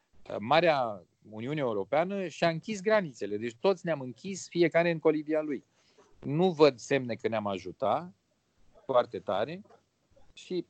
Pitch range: 120-175 Hz